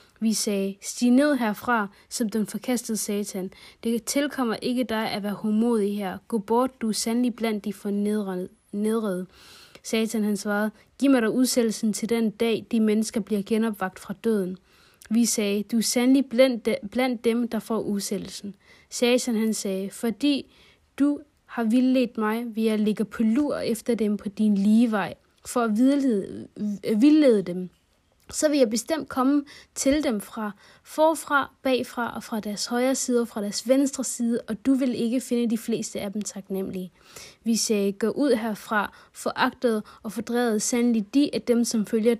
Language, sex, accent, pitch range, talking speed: Danish, female, native, 210-245 Hz, 170 wpm